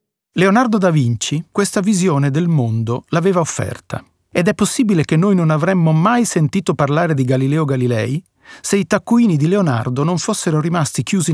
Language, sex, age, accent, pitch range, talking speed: Italian, male, 40-59, native, 135-185 Hz, 165 wpm